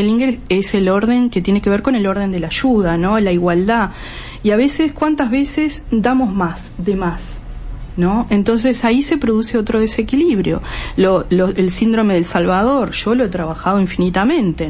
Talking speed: 175 wpm